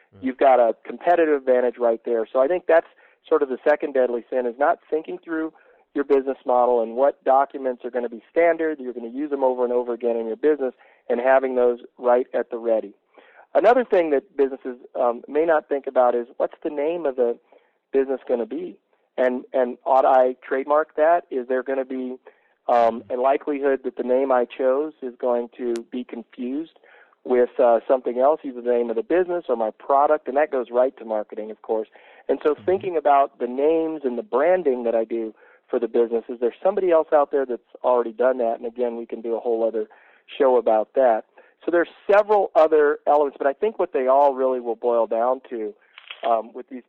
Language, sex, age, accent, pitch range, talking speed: English, male, 40-59, American, 120-150 Hz, 220 wpm